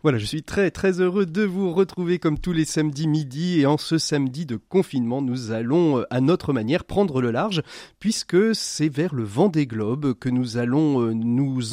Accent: French